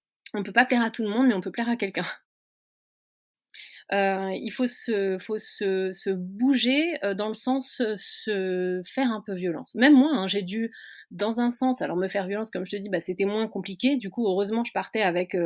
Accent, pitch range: French, 190-245 Hz